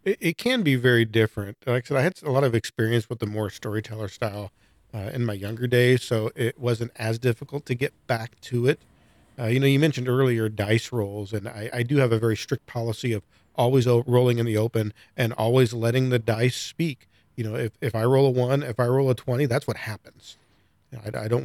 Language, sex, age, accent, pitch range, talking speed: English, male, 40-59, American, 110-130 Hz, 230 wpm